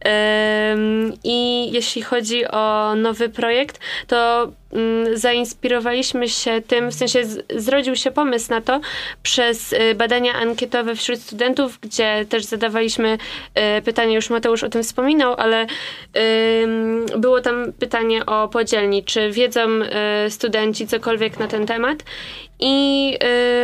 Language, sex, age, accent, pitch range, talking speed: Polish, female, 20-39, native, 215-245 Hz, 115 wpm